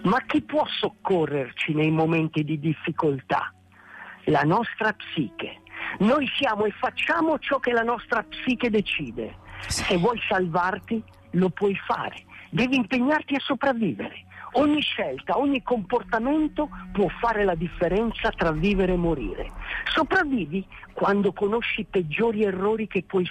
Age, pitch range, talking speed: 50-69, 165-240 Hz, 130 wpm